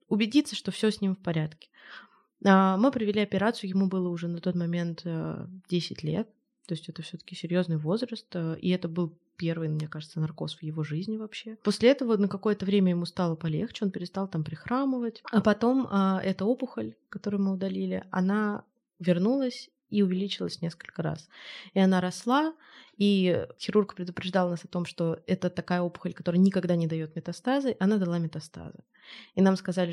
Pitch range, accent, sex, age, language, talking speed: 175-210 Hz, native, female, 20-39, Russian, 170 wpm